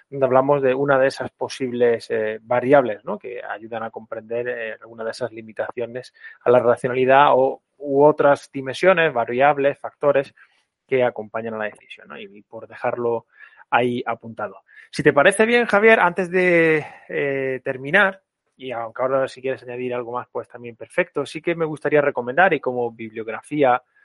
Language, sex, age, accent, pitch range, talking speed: Spanish, male, 20-39, Spanish, 125-150 Hz, 160 wpm